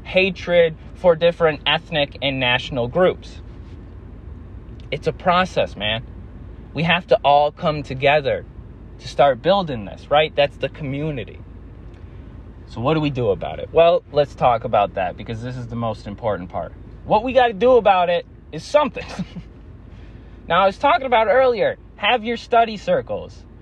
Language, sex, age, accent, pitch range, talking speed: English, male, 20-39, American, 125-205 Hz, 160 wpm